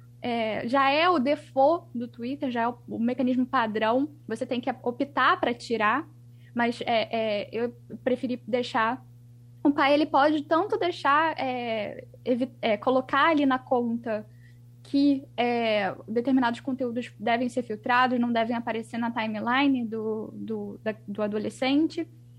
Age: 10-29